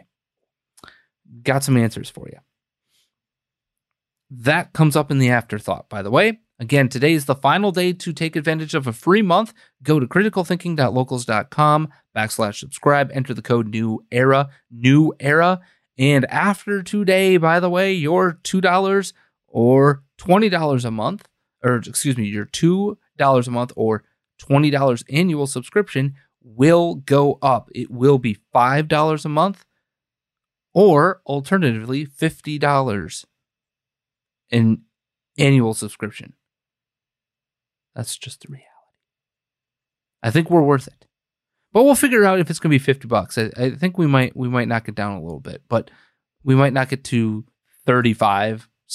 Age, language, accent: 30-49, English, American